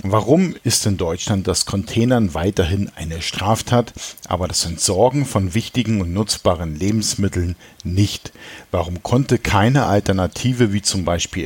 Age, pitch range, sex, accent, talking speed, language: 50-69, 90-115 Hz, male, German, 130 wpm, German